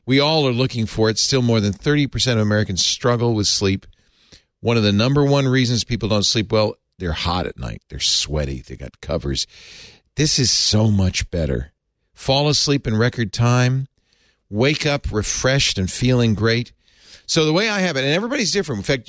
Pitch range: 100-135 Hz